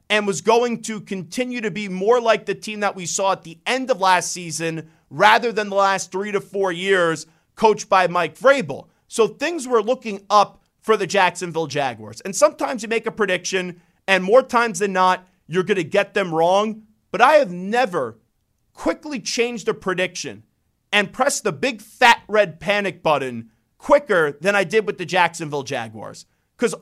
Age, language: 40-59, English